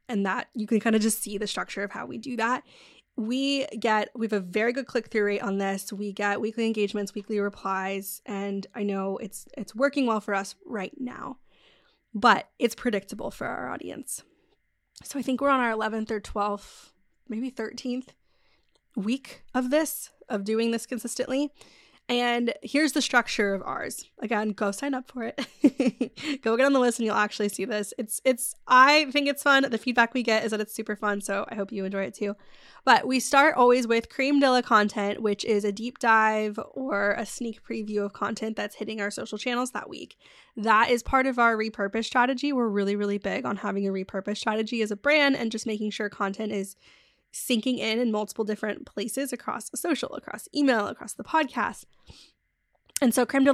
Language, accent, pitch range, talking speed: English, American, 210-255 Hz, 200 wpm